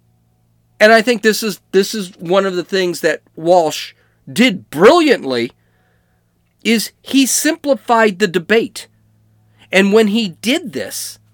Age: 40-59